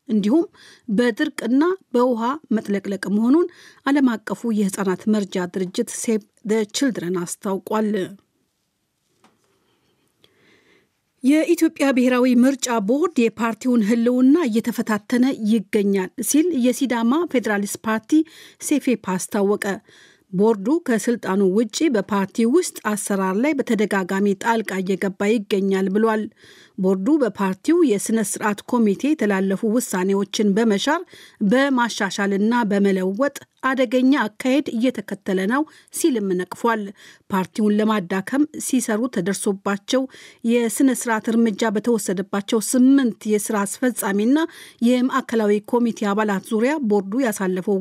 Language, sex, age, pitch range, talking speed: Amharic, female, 50-69, 205-255 Hz, 90 wpm